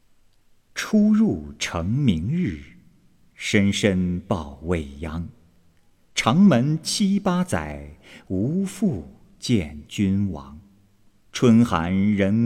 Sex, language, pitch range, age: male, Chinese, 95-145 Hz, 50-69